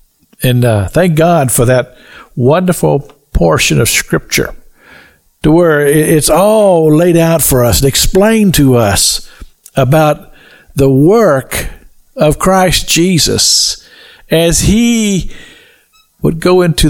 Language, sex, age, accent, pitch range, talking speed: English, male, 50-69, American, 135-185 Hz, 115 wpm